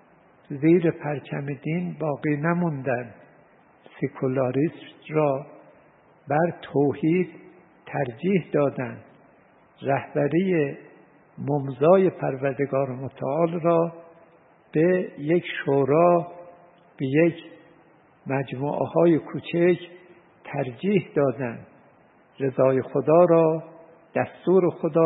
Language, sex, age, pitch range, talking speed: Persian, male, 60-79, 145-170 Hz, 75 wpm